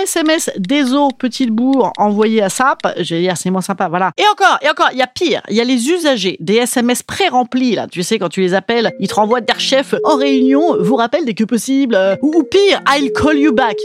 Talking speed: 245 wpm